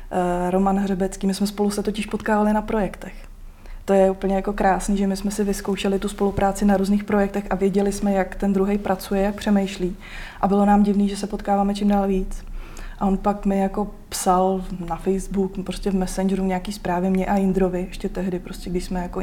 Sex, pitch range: female, 185-200 Hz